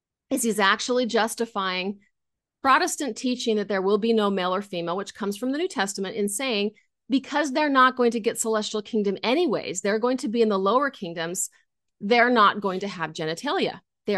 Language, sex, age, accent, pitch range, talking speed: English, female, 30-49, American, 190-235 Hz, 195 wpm